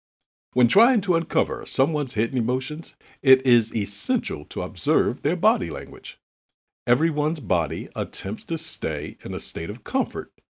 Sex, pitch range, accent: male, 95-155 Hz, American